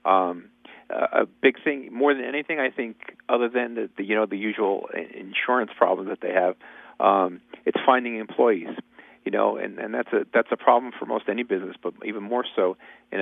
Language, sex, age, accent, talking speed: English, male, 40-59, American, 205 wpm